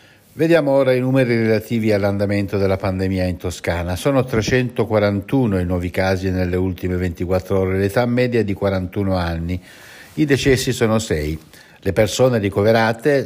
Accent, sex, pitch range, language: native, male, 95-125 Hz, Italian